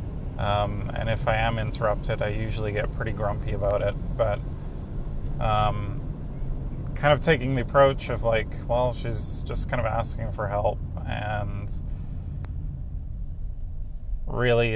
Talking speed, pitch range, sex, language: 130 wpm, 85-115 Hz, male, English